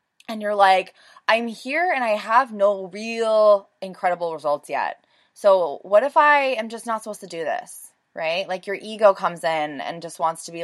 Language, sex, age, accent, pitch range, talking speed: English, female, 20-39, American, 160-220 Hz, 200 wpm